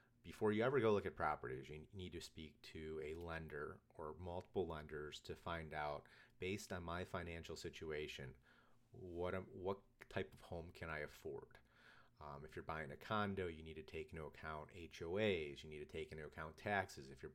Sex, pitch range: male, 80-90 Hz